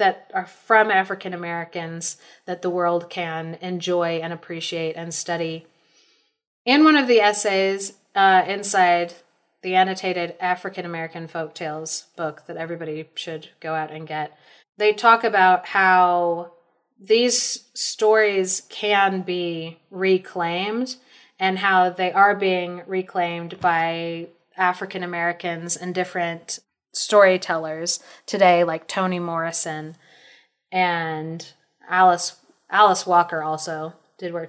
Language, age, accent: English, 30-49, American